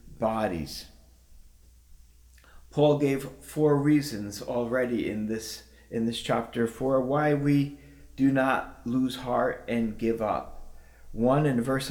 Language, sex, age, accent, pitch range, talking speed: English, male, 40-59, American, 110-150 Hz, 120 wpm